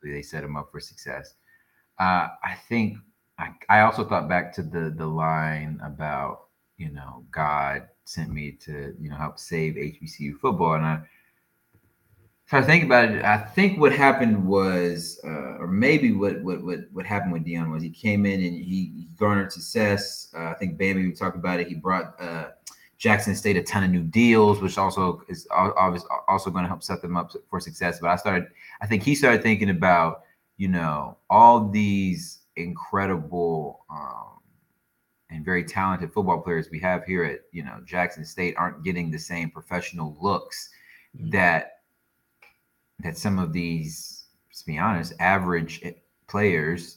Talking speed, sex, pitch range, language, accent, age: 175 wpm, male, 80-100 Hz, English, American, 30-49